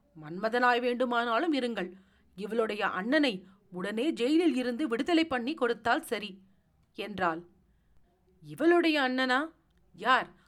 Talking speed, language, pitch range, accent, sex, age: 90 wpm, Tamil, 200-300 Hz, native, female, 40-59